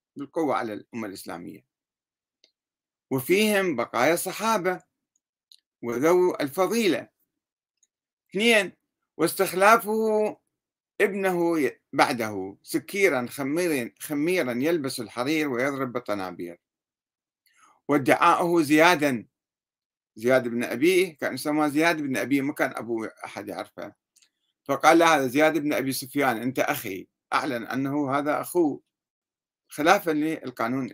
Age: 50-69